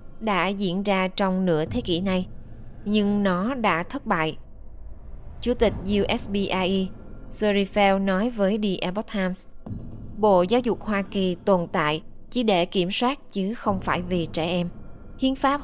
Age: 20-39